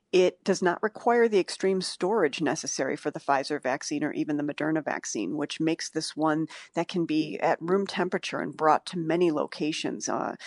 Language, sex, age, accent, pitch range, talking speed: English, female, 40-59, American, 155-185 Hz, 190 wpm